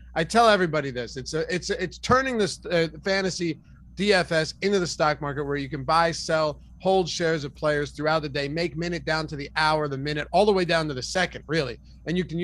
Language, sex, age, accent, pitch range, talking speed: English, male, 30-49, American, 145-175 Hz, 230 wpm